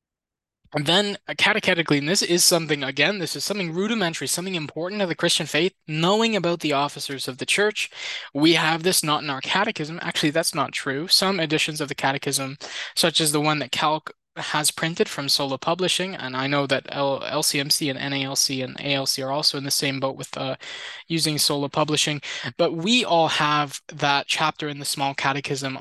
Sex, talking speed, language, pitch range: male, 195 wpm, English, 135-165 Hz